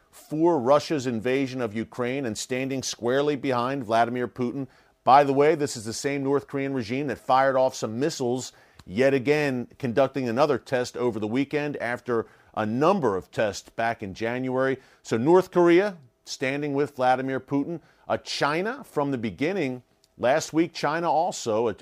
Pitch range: 120-145 Hz